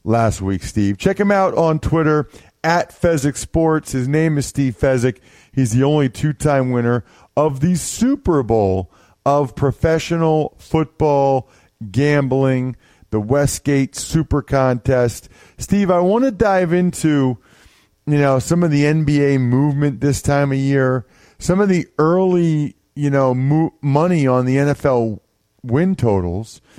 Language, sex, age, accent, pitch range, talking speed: English, male, 40-59, American, 120-155 Hz, 140 wpm